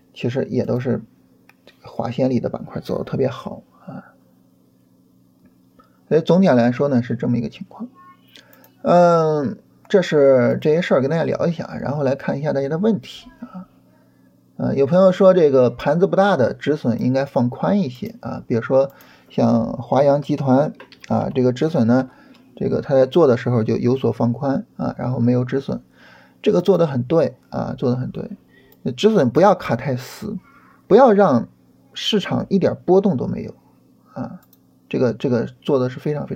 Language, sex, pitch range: Chinese, male, 120-165 Hz